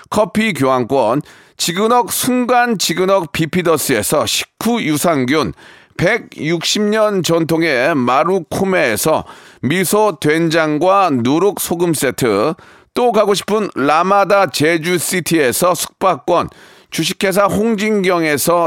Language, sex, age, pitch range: Korean, male, 40-59, 165-215 Hz